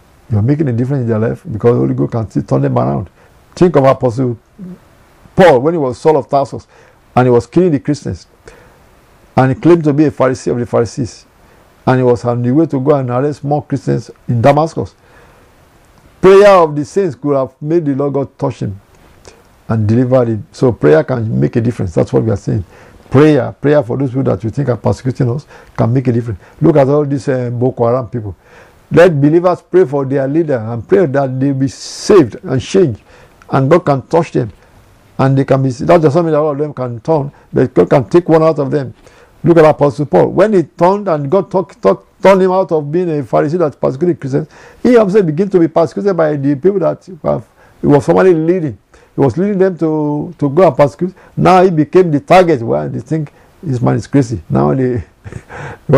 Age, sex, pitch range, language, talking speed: 50-69, male, 125-160 Hz, English, 220 wpm